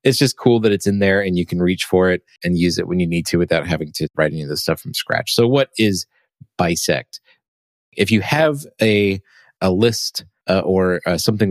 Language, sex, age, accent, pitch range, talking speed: English, male, 30-49, American, 90-110 Hz, 230 wpm